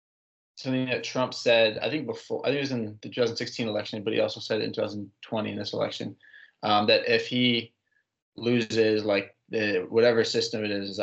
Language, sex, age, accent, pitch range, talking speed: English, male, 20-39, American, 105-120 Hz, 200 wpm